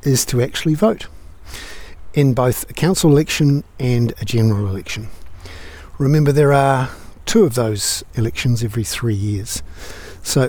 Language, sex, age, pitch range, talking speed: English, male, 50-69, 95-135 Hz, 135 wpm